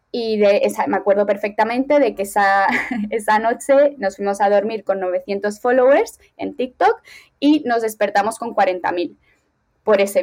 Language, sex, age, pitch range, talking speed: Spanish, female, 20-39, 195-245 Hz, 160 wpm